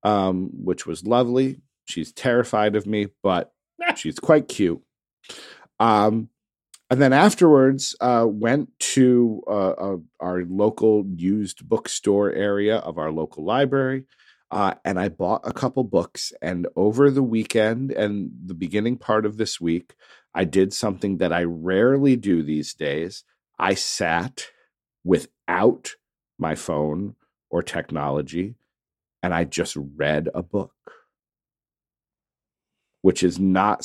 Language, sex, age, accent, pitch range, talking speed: English, male, 40-59, American, 90-120 Hz, 130 wpm